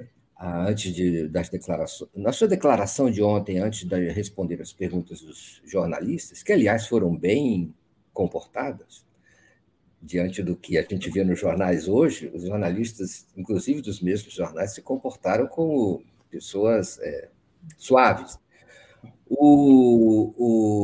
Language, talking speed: Portuguese, 125 wpm